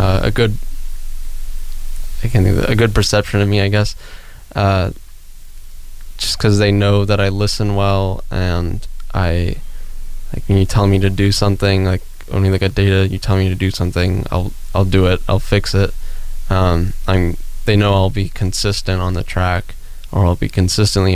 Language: English